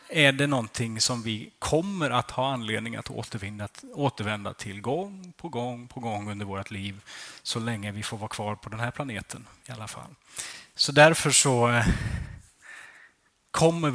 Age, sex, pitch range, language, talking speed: 30-49, male, 115-165 Hz, Swedish, 165 wpm